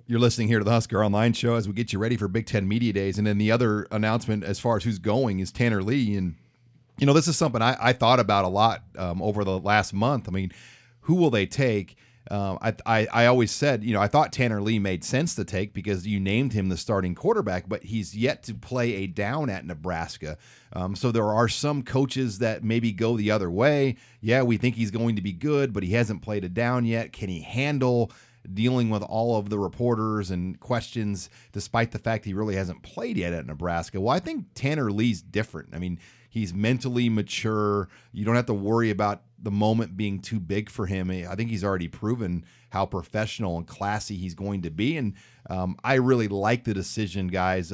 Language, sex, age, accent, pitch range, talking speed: English, male, 30-49, American, 100-120 Hz, 225 wpm